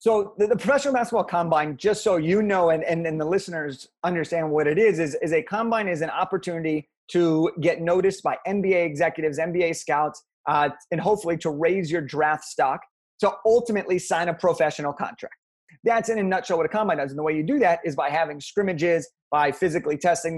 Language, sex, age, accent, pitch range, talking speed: English, male, 30-49, American, 160-210 Hz, 200 wpm